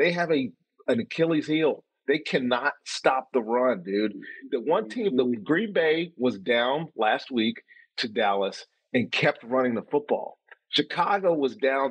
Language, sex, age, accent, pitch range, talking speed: English, male, 40-59, American, 125-180 Hz, 160 wpm